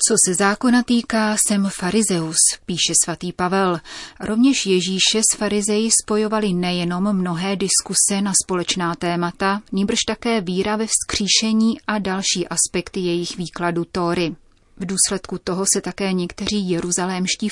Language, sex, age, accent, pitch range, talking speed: Czech, female, 30-49, native, 175-205 Hz, 130 wpm